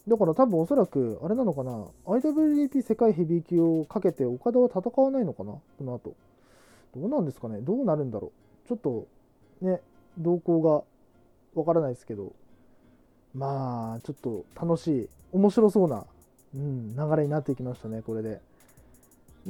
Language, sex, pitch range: Japanese, male, 125-185 Hz